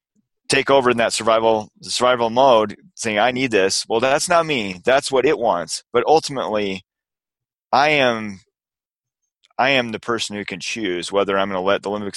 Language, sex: English, male